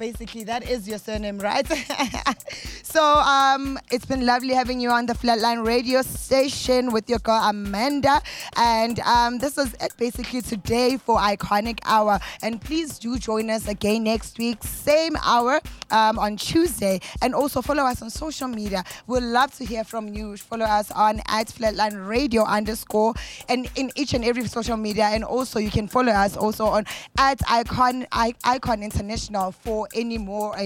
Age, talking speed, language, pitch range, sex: 20-39, 170 wpm, English, 215-255 Hz, female